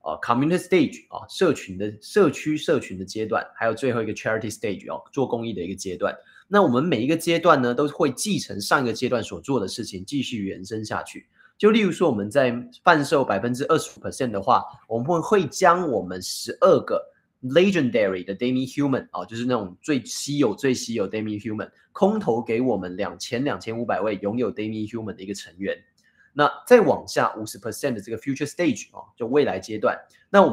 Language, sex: Chinese, male